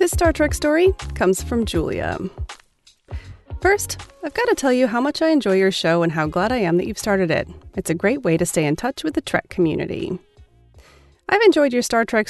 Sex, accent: female, American